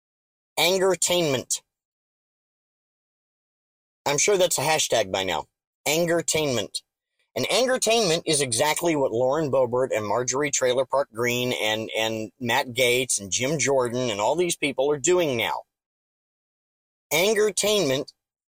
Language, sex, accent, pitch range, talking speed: English, male, American, 130-180 Hz, 115 wpm